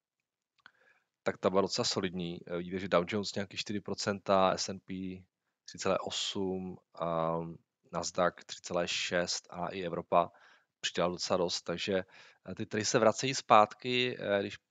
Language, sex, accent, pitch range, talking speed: Czech, male, native, 95-110 Hz, 120 wpm